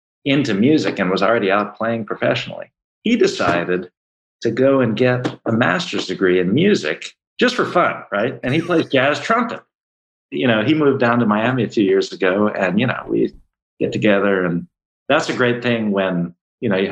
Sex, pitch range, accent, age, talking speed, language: male, 105-130 Hz, American, 50-69, 190 wpm, English